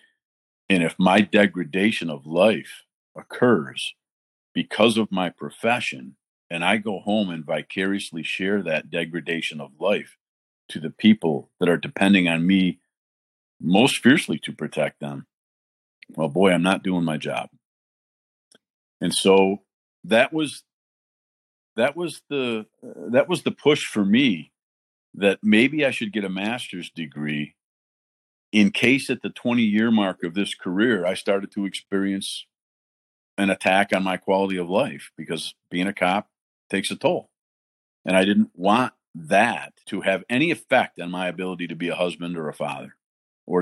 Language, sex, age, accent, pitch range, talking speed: English, male, 50-69, American, 80-105 Hz, 155 wpm